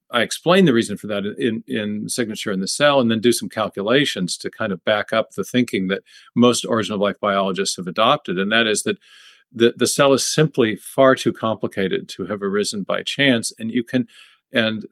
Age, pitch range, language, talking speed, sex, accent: 50-69, 110-130 Hz, English, 210 wpm, male, American